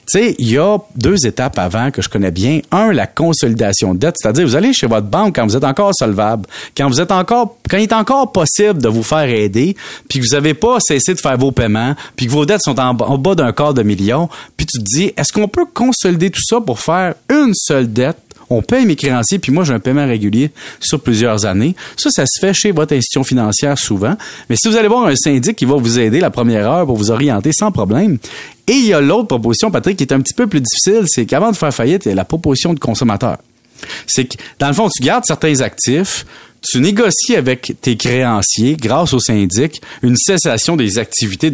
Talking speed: 240 wpm